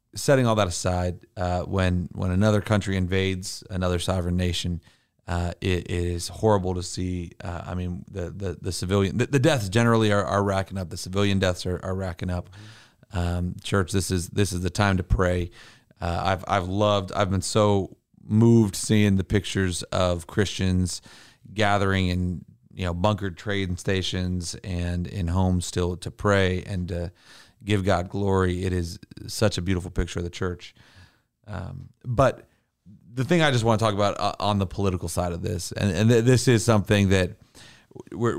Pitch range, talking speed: 90-110 Hz, 185 wpm